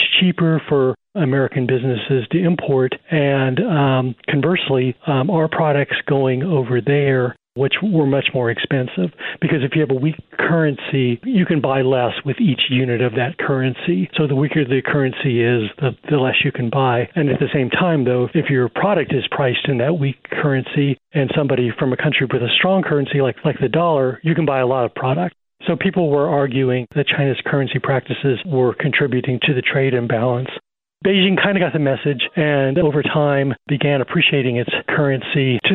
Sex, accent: male, American